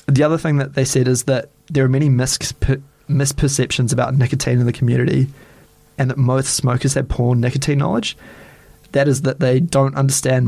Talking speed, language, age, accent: 190 wpm, English, 20-39, Australian